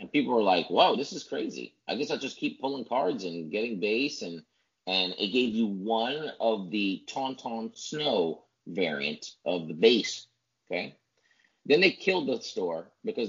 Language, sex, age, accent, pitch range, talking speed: English, male, 30-49, American, 95-130 Hz, 175 wpm